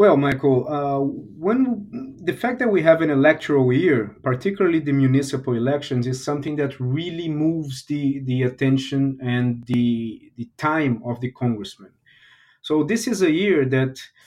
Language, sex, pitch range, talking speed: English, male, 130-170 Hz, 155 wpm